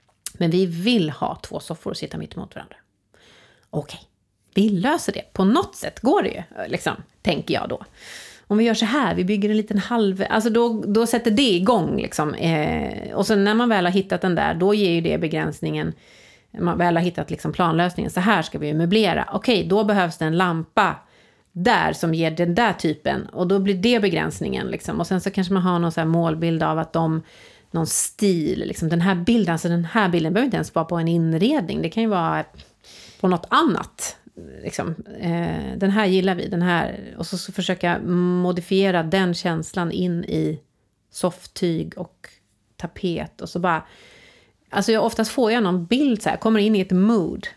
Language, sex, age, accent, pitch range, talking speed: English, female, 30-49, Swedish, 170-215 Hz, 200 wpm